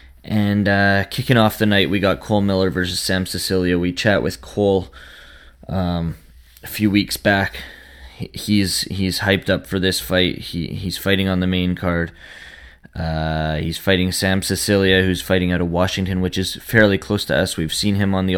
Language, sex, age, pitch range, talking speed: English, male, 20-39, 85-105 Hz, 185 wpm